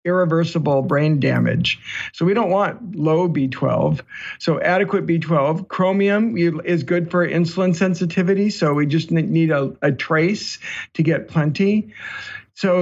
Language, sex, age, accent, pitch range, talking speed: English, male, 50-69, American, 155-190 Hz, 135 wpm